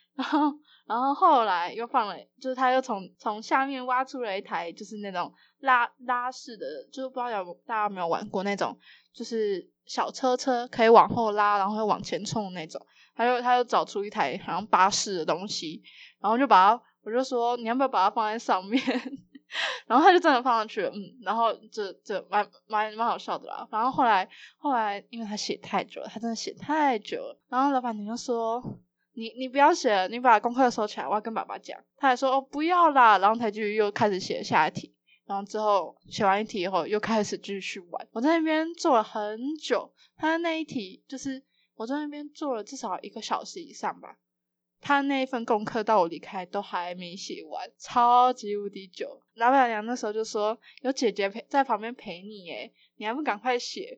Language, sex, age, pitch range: Chinese, female, 10-29, 210-265 Hz